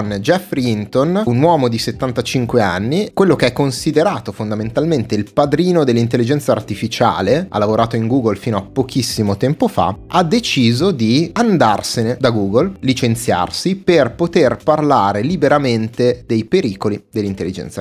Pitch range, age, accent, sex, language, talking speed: 105-145 Hz, 30-49, native, male, Italian, 130 wpm